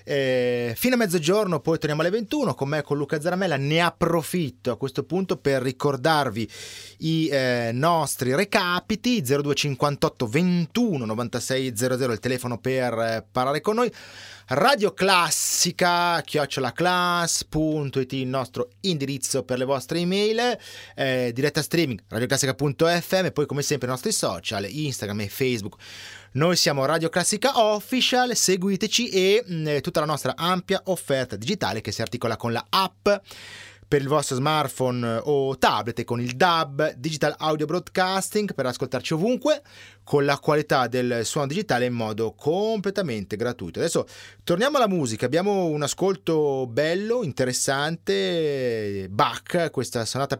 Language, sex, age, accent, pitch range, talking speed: Italian, male, 30-49, native, 130-180 Hz, 135 wpm